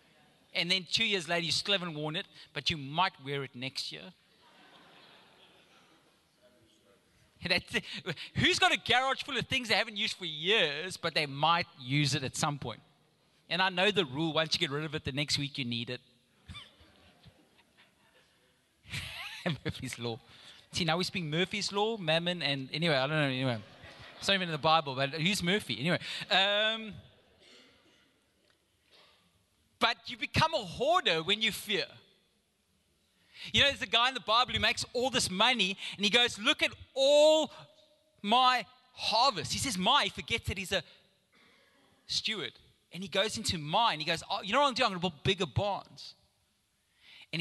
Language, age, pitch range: English, 30-49, 145-210 Hz